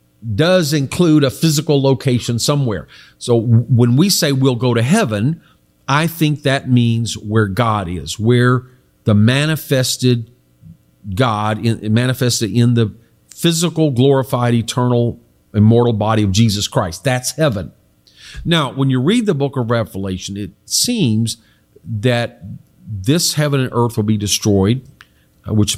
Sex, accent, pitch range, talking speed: male, American, 105-135 Hz, 135 wpm